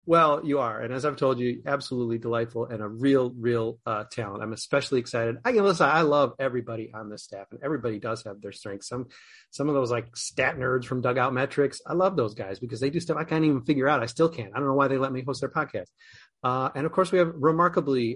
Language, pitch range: English, 120-155 Hz